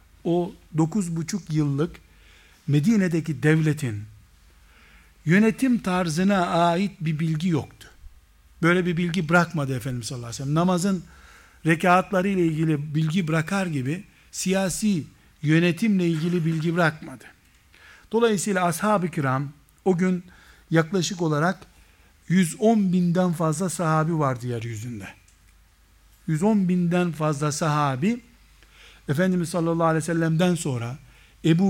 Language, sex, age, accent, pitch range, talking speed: Turkish, male, 60-79, native, 145-185 Hz, 105 wpm